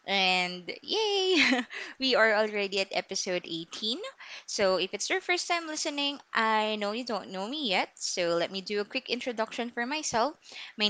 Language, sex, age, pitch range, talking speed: English, female, 20-39, 180-235 Hz, 175 wpm